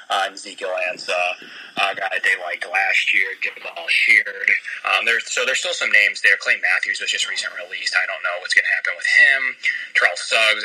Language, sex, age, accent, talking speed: English, male, 30-49, American, 215 wpm